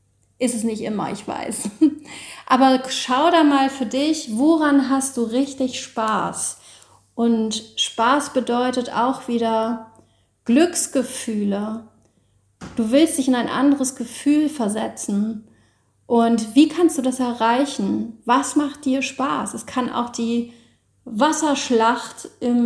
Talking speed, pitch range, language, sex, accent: 120 wpm, 220-270 Hz, German, female, German